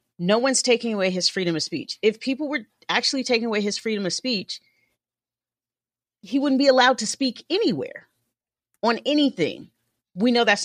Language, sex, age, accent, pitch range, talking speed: English, female, 40-59, American, 175-250 Hz, 170 wpm